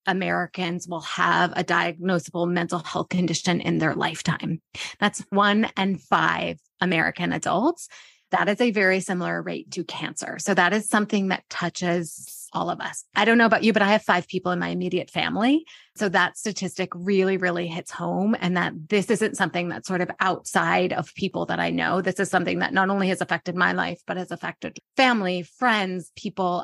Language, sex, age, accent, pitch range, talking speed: English, female, 20-39, American, 175-210 Hz, 190 wpm